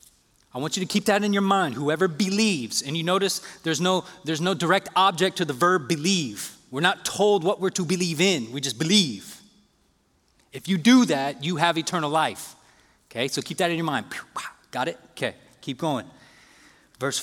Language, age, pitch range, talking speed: English, 30-49, 145-195 Hz, 195 wpm